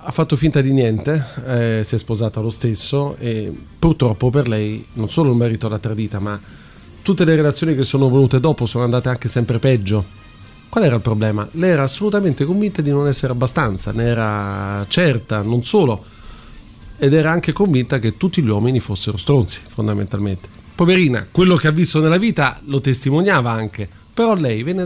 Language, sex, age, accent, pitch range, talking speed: Italian, male, 40-59, native, 110-145 Hz, 180 wpm